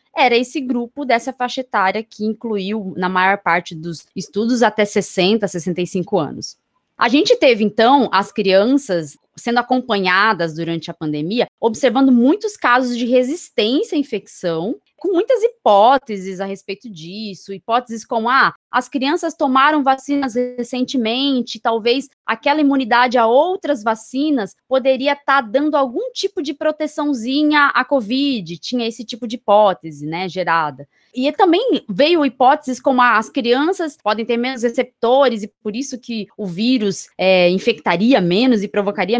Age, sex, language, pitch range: 20-39, female, Portuguese, 200-275 Hz